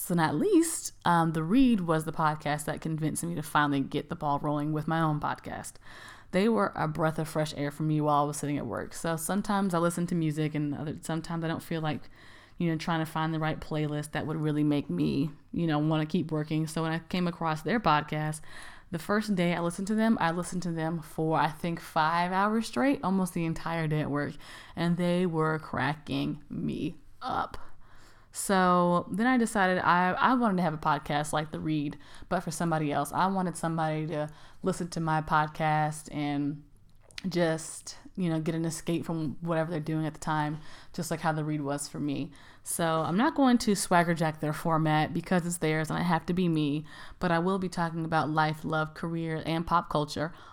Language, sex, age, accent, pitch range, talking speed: English, female, 20-39, American, 150-175 Hz, 215 wpm